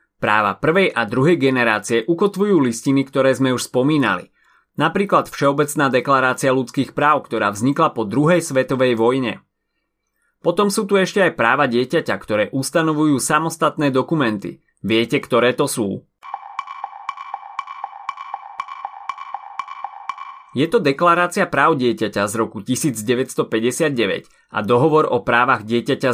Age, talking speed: 30-49, 115 wpm